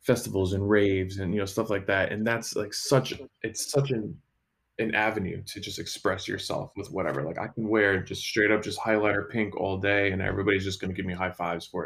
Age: 20-39